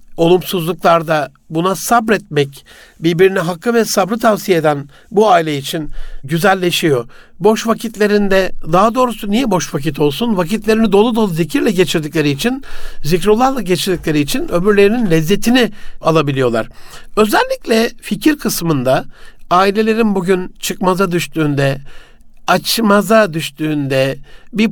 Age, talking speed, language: 60-79, 105 wpm, Turkish